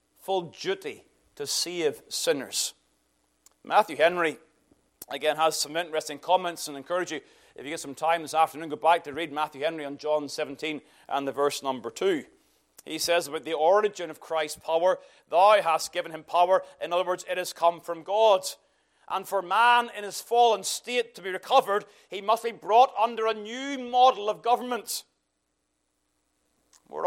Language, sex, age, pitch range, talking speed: English, male, 40-59, 160-260 Hz, 175 wpm